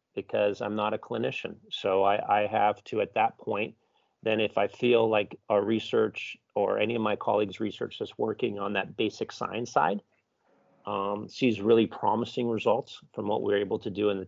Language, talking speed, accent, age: English, 195 wpm, American, 40-59